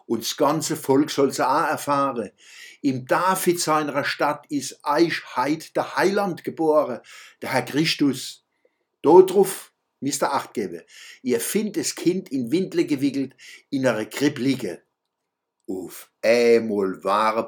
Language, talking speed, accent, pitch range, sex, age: German, 135 wpm, German, 120-155 Hz, male, 60-79